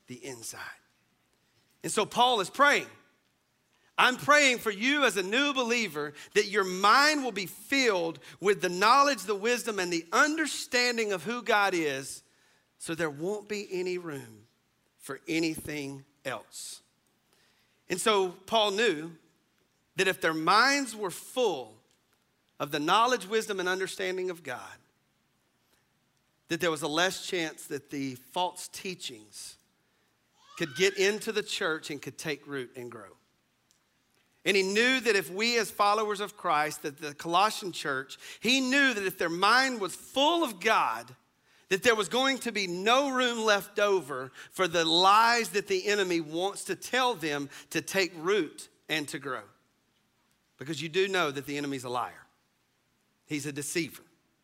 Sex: male